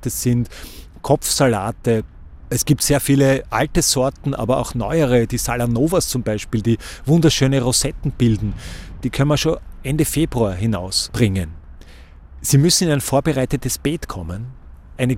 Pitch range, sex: 110-145 Hz, male